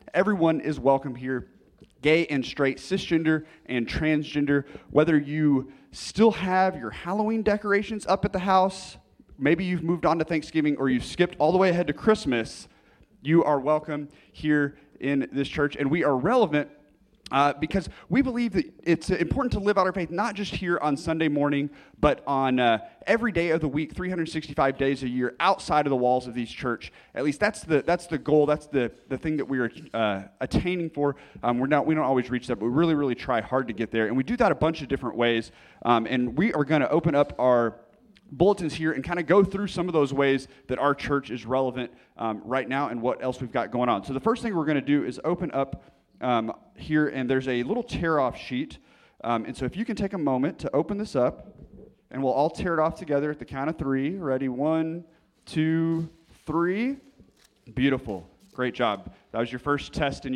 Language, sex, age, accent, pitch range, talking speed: English, male, 30-49, American, 130-170 Hz, 220 wpm